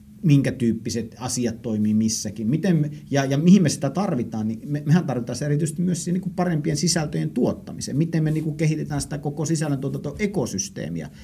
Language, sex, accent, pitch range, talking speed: Finnish, male, native, 110-150 Hz, 165 wpm